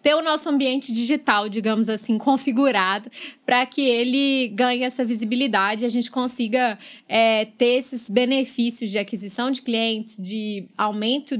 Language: Portuguese